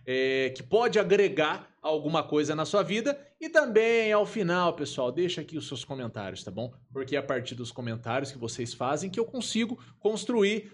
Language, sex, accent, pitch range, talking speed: Portuguese, male, Brazilian, 155-220 Hz, 185 wpm